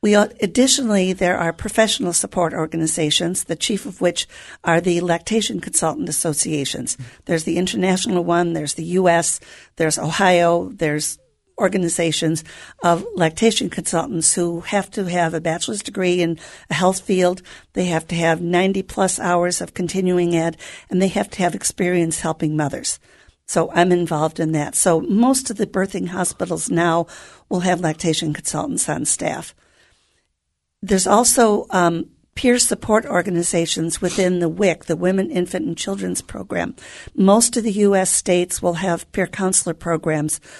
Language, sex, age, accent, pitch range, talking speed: English, female, 50-69, American, 165-190 Hz, 150 wpm